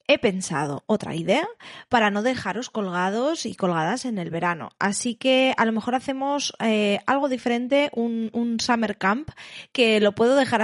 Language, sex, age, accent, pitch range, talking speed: Spanish, female, 20-39, Spanish, 195-255 Hz, 170 wpm